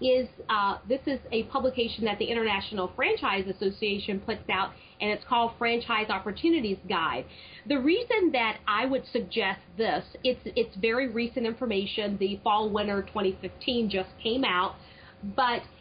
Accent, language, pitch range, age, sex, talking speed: American, English, 200-250 Hz, 40-59, female, 150 wpm